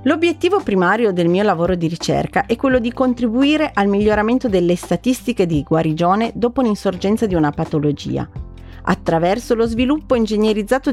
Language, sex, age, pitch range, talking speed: Italian, female, 40-59, 160-235 Hz, 145 wpm